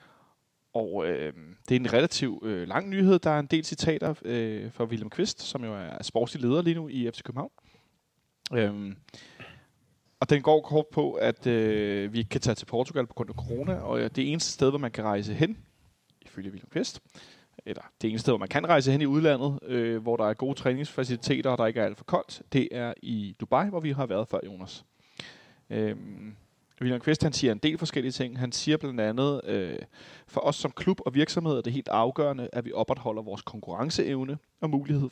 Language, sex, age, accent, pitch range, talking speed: Danish, male, 30-49, native, 115-145 Hz, 205 wpm